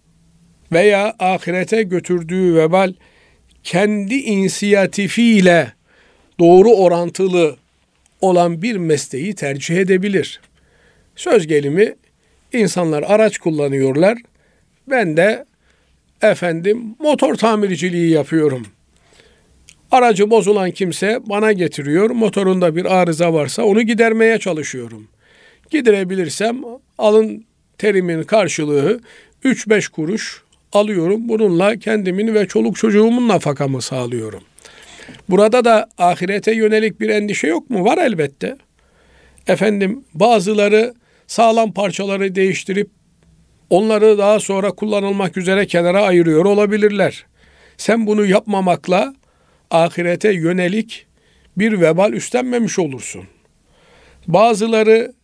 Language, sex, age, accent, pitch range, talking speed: Turkish, male, 50-69, native, 170-215 Hz, 90 wpm